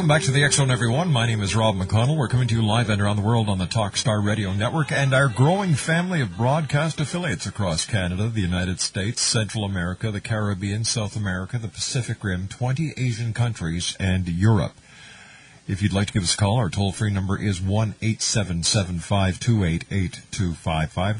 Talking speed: 185 wpm